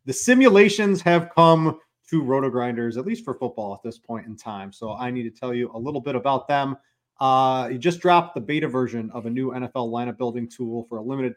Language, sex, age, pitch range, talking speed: English, male, 30-49, 115-140 Hz, 225 wpm